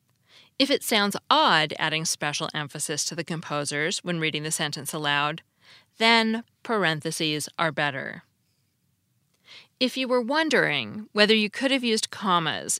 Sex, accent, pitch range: female, American, 155-220 Hz